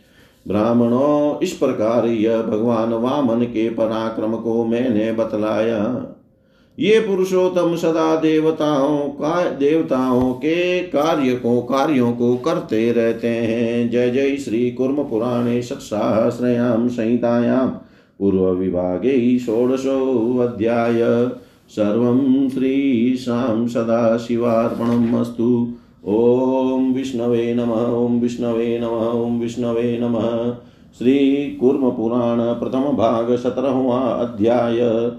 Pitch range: 115-145 Hz